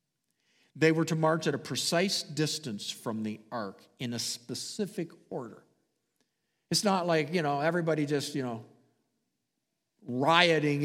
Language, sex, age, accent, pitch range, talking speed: English, male, 50-69, American, 135-175 Hz, 140 wpm